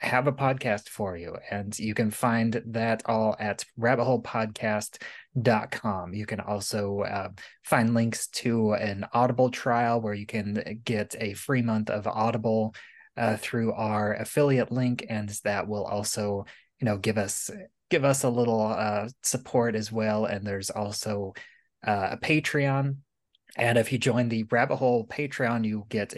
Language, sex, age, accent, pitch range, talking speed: English, male, 20-39, American, 105-120 Hz, 160 wpm